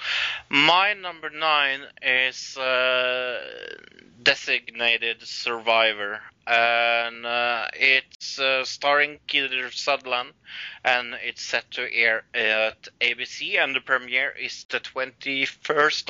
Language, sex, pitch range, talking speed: English, male, 120-150 Hz, 100 wpm